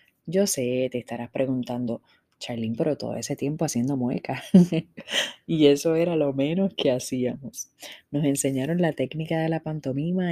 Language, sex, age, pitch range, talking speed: Spanish, female, 20-39, 125-170 Hz, 150 wpm